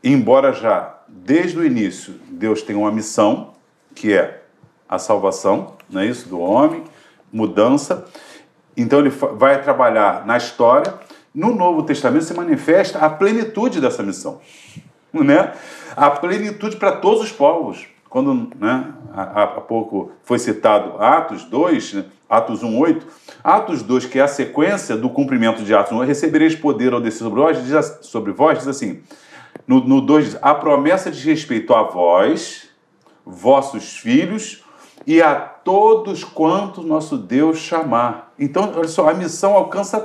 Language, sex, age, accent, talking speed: Portuguese, male, 40-59, Brazilian, 145 wpm